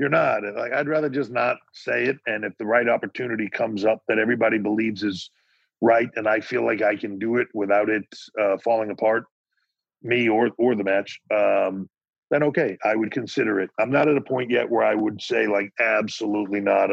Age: 50-69